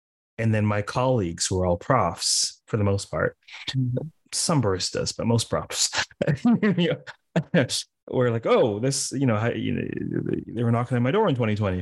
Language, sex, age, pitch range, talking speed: English, male, 30-49, 95-115 Hz, 165 wpm